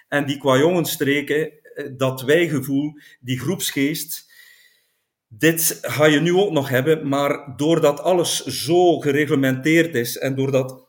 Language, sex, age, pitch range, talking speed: Dutch, male, 50-69, 125-150 Hz, 120 wpm